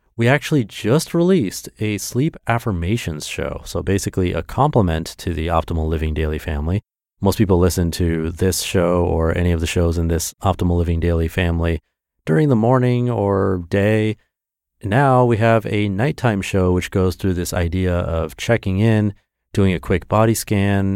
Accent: American